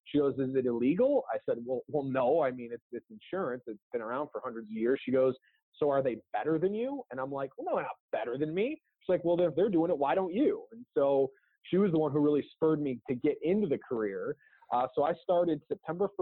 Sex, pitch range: male, 130-155 Hz